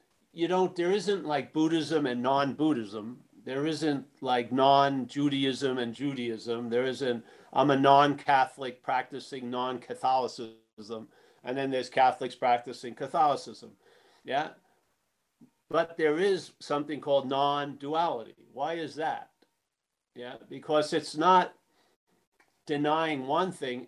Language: English